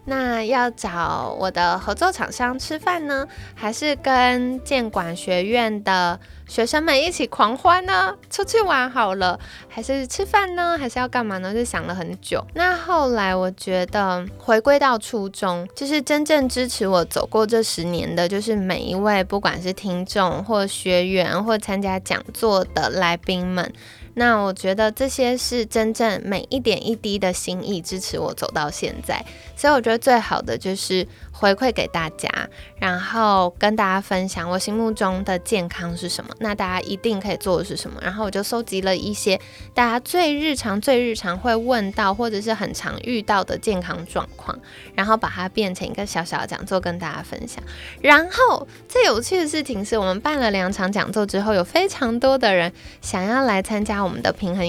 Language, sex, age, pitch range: Chinese, female, 20-39, 185-250 Hz